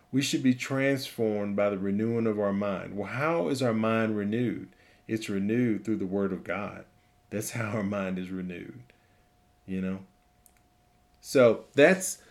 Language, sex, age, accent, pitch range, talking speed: English, male, 40-59, American, 100-125 Hz, 160 wpm